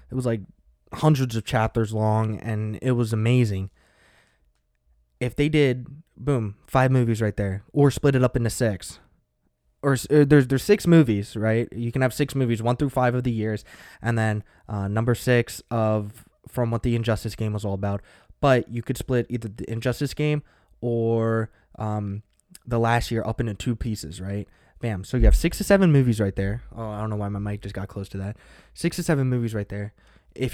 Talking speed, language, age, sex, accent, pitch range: 205 wpm, English, 20-39, male, American, 105-125 Hz